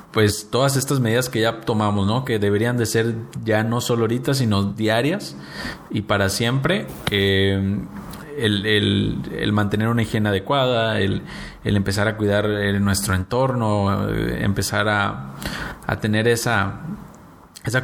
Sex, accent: male, Mexican